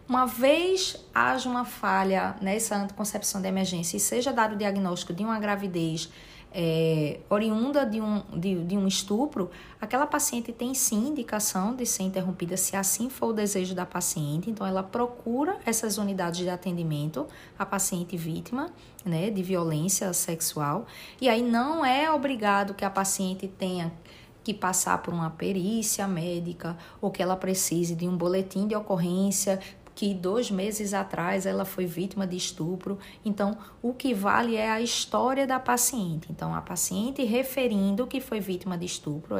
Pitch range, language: 185-235 Hz, Portuguese